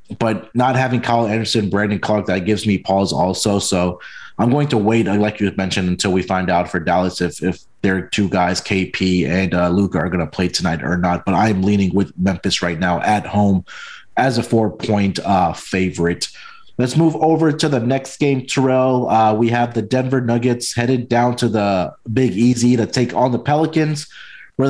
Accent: American